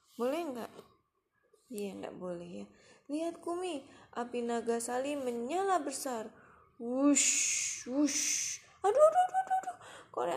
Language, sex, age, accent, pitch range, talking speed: Indonesian, female, 20-39, native, 190-315 Hz, 120 wpm